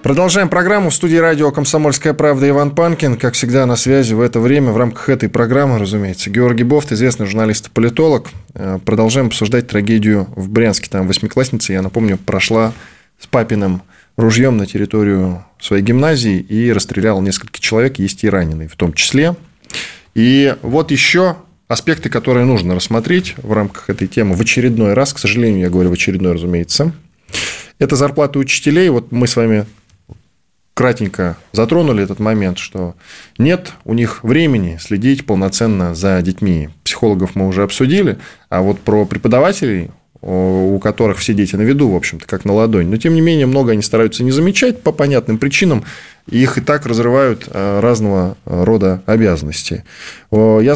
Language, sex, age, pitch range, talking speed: Russian, male, 20-39, 100-140 Hz, 160 wpm